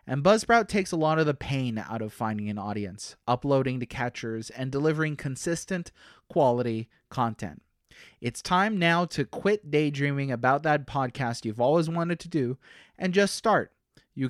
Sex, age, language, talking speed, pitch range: male, 30-49, English, 165 wpm, 130-185 Hz